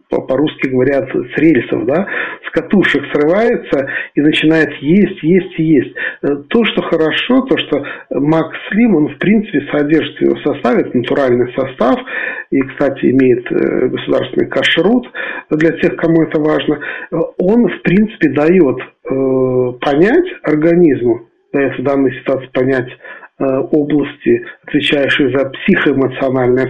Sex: male